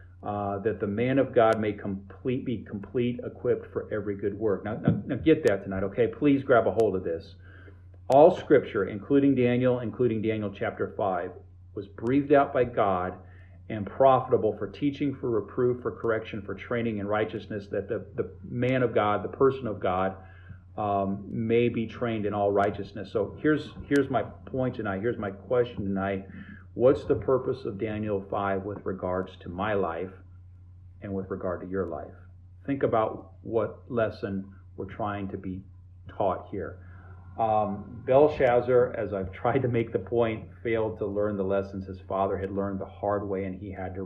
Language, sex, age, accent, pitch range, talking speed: English, male, 40-59, American, 95-120 Hz, 180 wpm